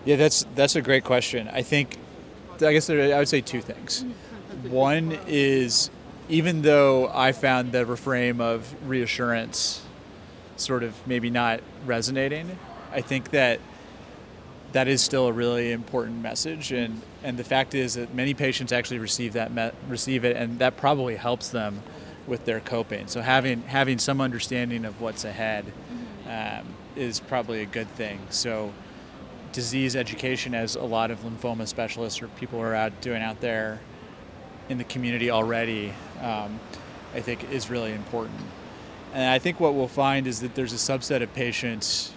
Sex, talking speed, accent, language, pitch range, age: male, 165 wpm, American, English, 115-130 Hz, 30-49